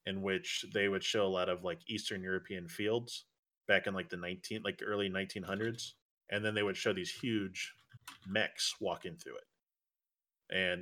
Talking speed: 185 wpm